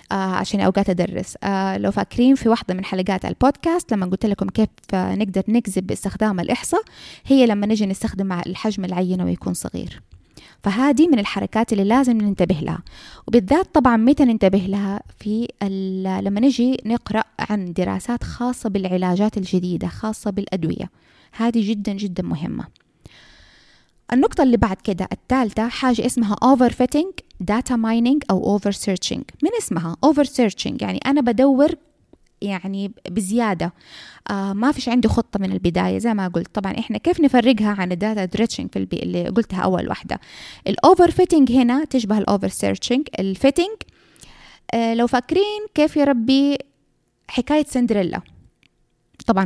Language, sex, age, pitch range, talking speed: Arabic, female, 20-39, 190-250 Hz, 135 wpm